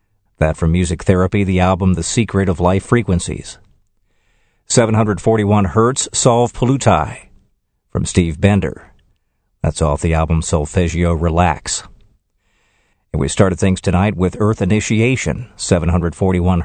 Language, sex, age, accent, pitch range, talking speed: English, male, 50-69, American, 90-105 Hz, 120 wpm